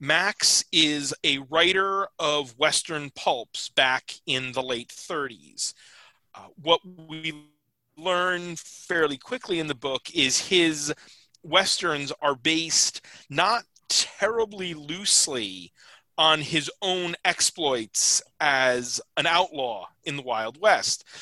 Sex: male